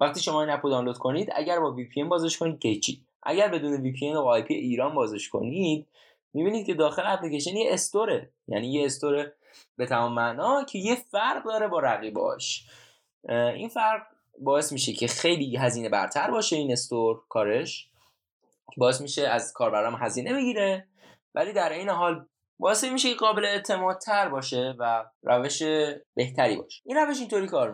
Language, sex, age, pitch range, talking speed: Persian, male, 10-29, 120-185 Hz, 175 wpm